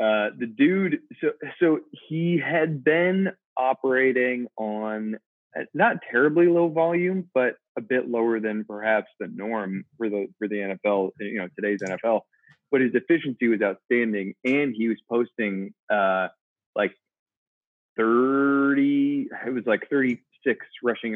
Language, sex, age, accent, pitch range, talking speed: English, male, 20-39, American, 110-155 Hz, 135 wpm